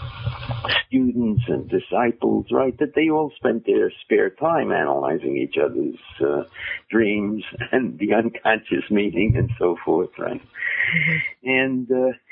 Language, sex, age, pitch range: English, male, 60-79, 110-145 Hz